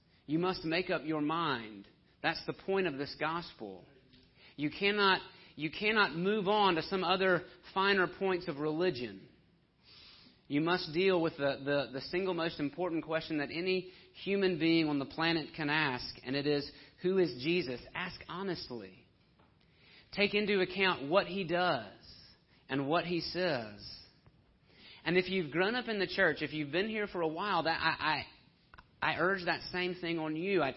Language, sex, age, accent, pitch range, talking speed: English, male, 40-59, American, 145-180 Hz, 175 wpm